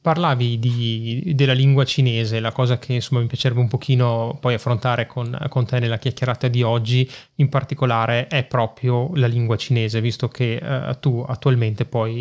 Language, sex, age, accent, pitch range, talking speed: Italian, male, 20-39, native, 120-135 Hz, 170 wpm